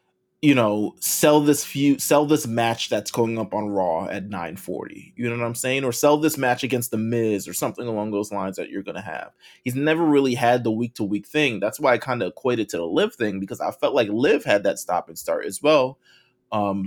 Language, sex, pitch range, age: English, male, 115-145 Hz, 20-39